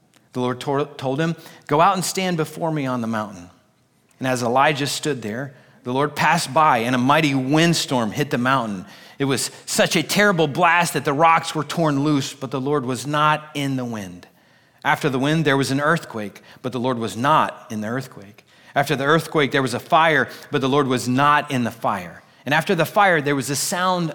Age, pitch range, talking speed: 30-49, 120-150 Hz, 215 wpm